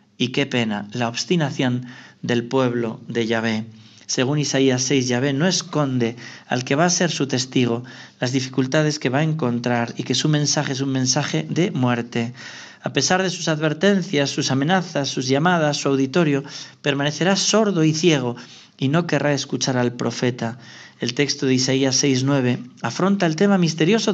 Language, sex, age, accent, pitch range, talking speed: Spanish, male, 40-59, Spanish, 130-170 Hz, 165 wpm